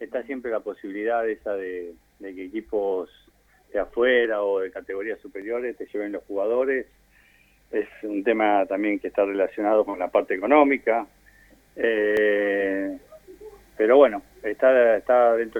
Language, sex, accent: Spanish, male, Argentinian